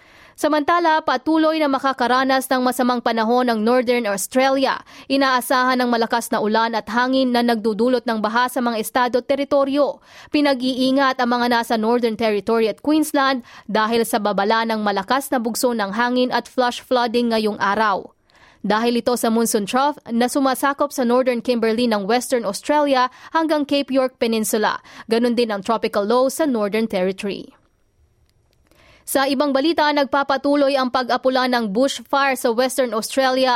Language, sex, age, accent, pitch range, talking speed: Filipino, female, 20-39, native, 230-270 Hz, 150 wpm